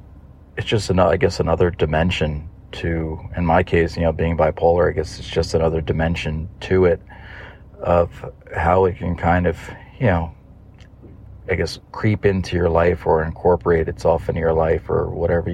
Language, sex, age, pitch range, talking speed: English, male, 40-59, 85-100 Hz, 175 wpm